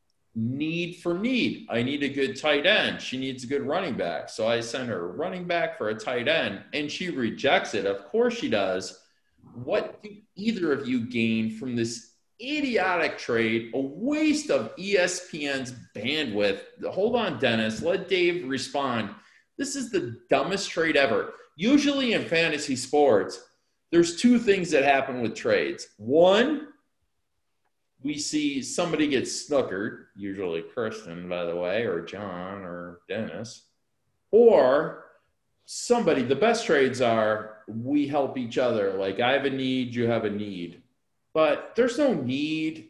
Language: English